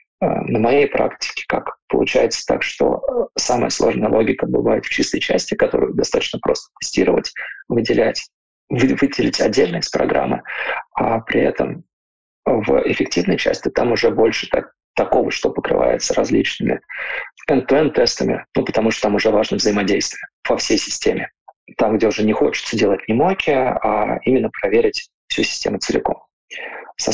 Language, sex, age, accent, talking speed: Russian, male, 20-39, native, 140 wpm